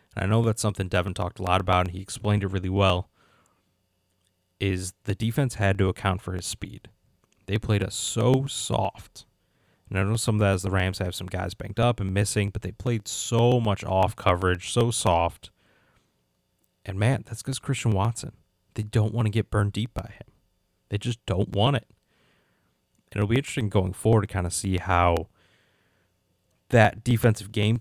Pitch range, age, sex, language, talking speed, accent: 95-115 Hz, 30-49, male, English, 190 wpm, American